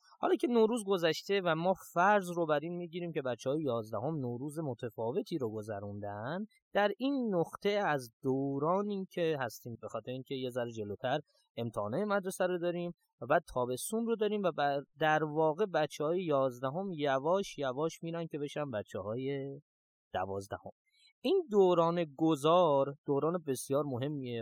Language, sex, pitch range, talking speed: Persian, male, 125-180 Hz, 145 wpm